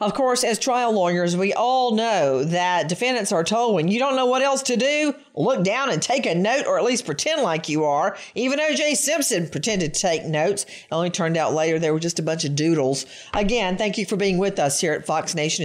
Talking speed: 240 wpm